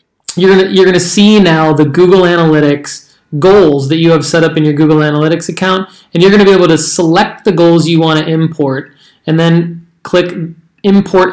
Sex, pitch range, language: male, 150-170 Hz, English